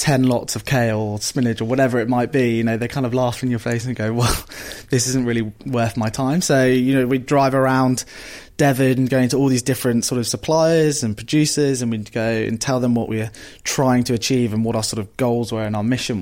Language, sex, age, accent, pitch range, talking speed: English, male, 20-39, British, 115-135 Hz, 250 wpm